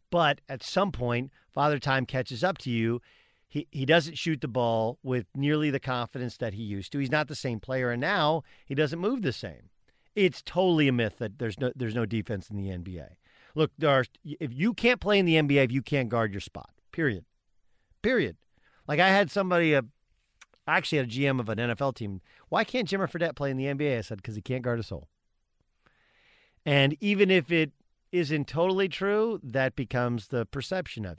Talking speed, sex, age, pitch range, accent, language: 210 wpm, male, 40-59, 115-160 Hz, American, English